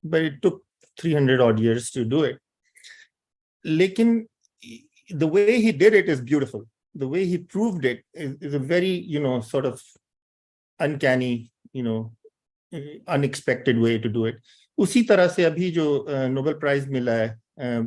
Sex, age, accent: male, 50-69, Indian